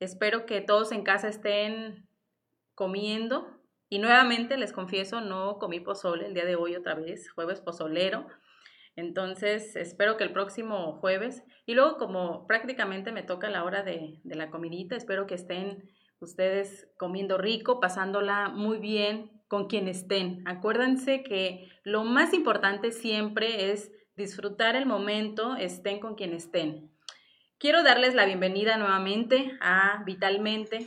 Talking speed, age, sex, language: 140 wpm, 30-49, female, Spanish